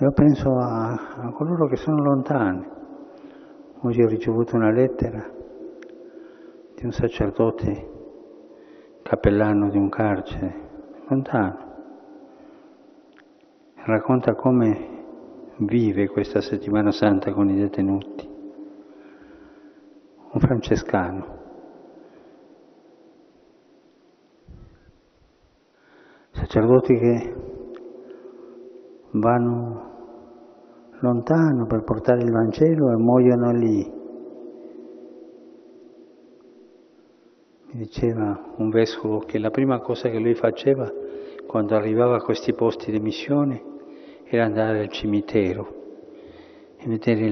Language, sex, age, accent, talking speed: Italian, male, 50-69, native, 85 wpm